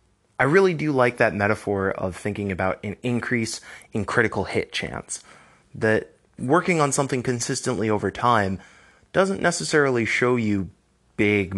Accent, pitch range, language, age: American, 95-125 Hz, English, 20-39